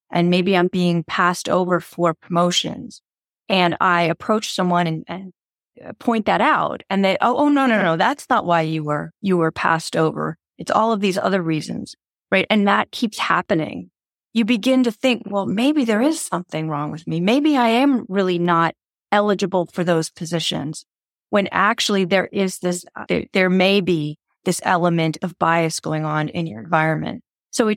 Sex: female